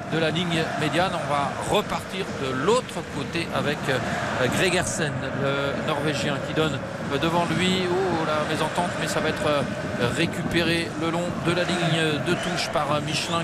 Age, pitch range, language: 40-59, 155-190 Hz, French